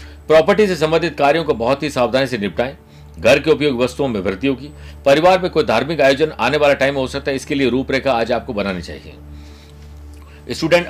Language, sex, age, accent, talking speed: Hindi, male, 50-69, native, 200 wpm